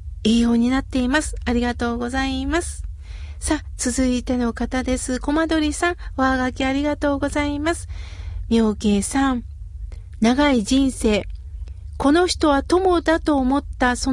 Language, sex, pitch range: Japanese, female, 215-275 Hz